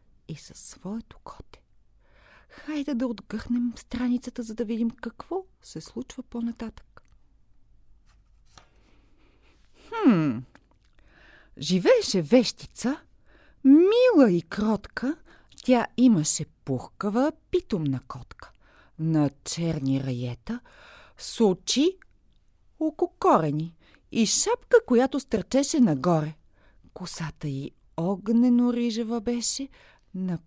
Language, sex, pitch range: Bulgarian, female, 170-275 Hz